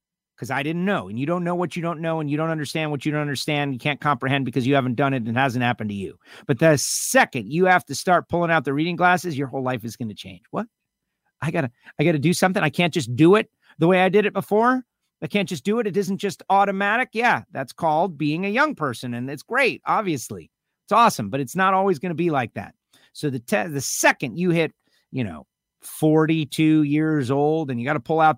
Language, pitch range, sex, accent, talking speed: English, 135-185 Hz, male, American, 255 wpm